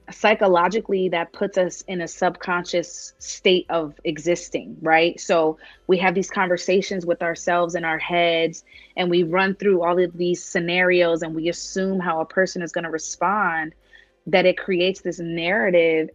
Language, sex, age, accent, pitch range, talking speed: English, female, 20-39, American, 160-185 Hz, 165 wpm